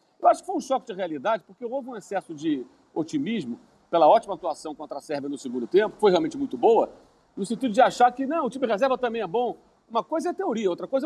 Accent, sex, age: Brazilian, male, 40-59